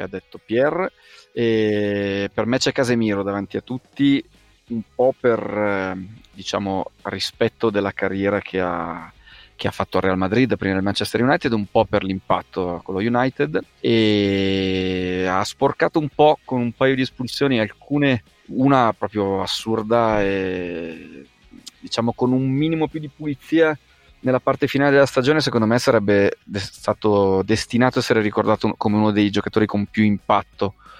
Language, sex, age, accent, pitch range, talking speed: Italian, male, 30-49, native, 100-125 Hz, 155 wpm